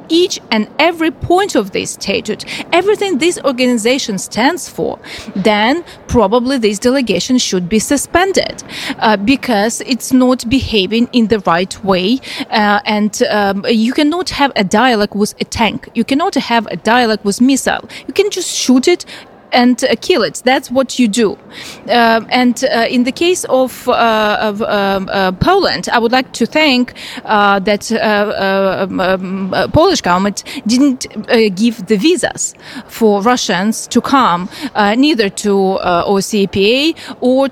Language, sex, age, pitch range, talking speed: English, female, 30-49, 205-265 Hz, 160 wpm